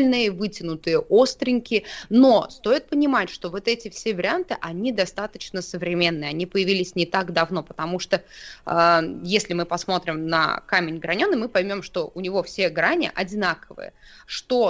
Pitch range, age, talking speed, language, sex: 180-220 Hz, 20-39, 145 wpm, Russian, female